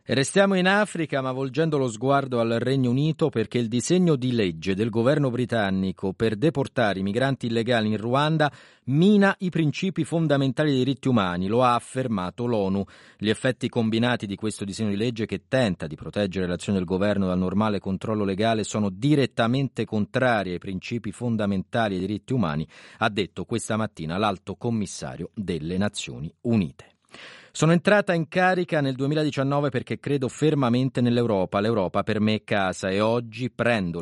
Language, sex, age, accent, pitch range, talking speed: Italian, male, 40-59, native, 100-135 Hz, 160 wpm